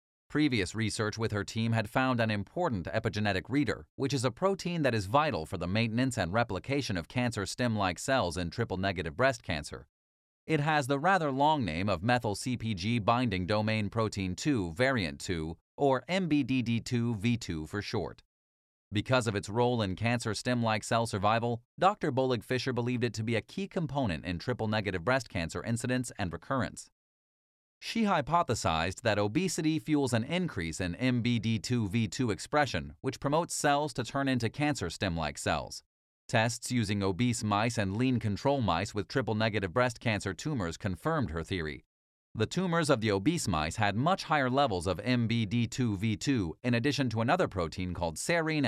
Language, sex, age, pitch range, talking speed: English, male, 30-49, 95-130 Hz, 155 wpm